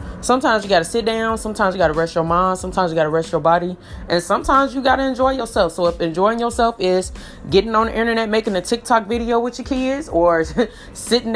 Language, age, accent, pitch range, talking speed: English, 20-39, American, 165-225 Hz, 240 wpm